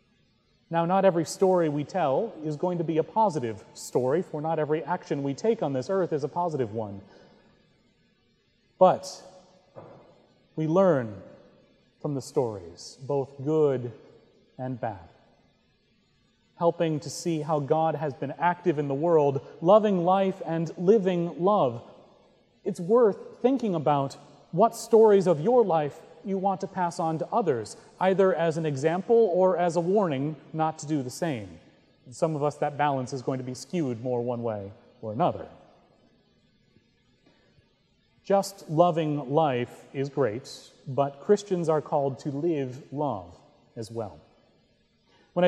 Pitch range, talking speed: 145-185 Hz, 145 wpm